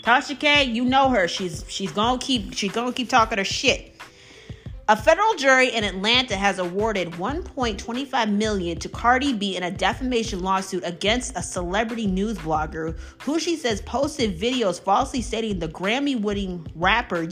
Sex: female